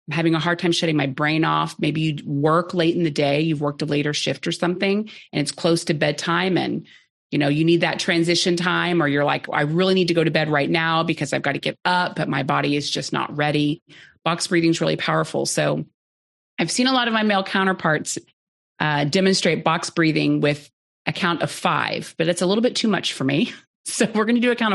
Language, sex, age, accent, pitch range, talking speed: English, female, 30-49, American, 155-200 Hz, 240 wpm